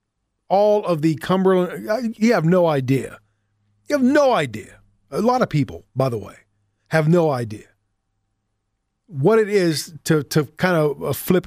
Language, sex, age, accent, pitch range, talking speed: English, male, 40-59, American, 135-180 Hz, 155 wpm